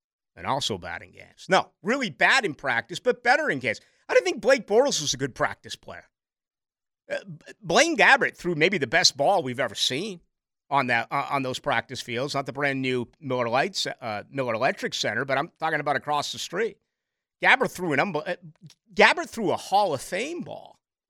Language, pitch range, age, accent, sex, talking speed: English, 135-185 Hz, 50-69, American, male, 205 wpm